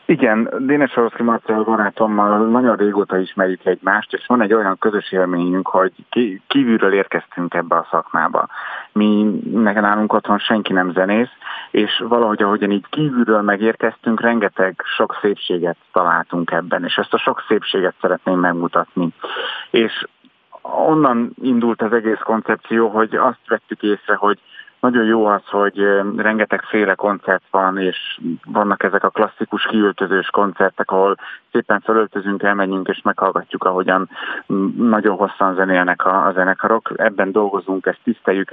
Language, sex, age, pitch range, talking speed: Hungarian, male, 30-49, 95-110 Hz, 135 wpm